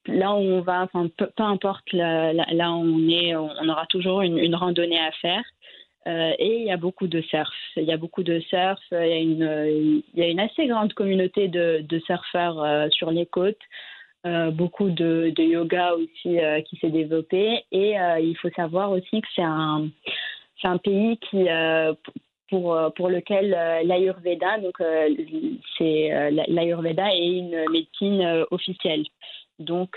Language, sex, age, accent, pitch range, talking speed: English, female, 20-39, French, 160-180 Hz, 190 wpm